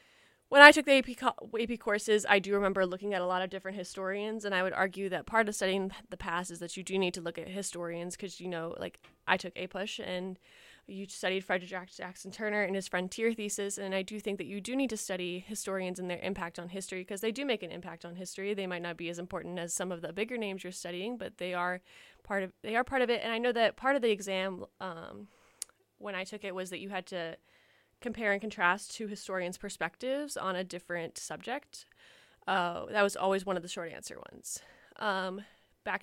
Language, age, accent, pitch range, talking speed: English, 20-39, American, 185-225 Hz, 230 wpm